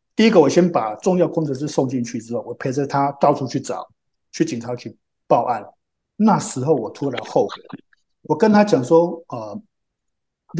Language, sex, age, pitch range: Chinese, male, 50-69, 135-185 Hz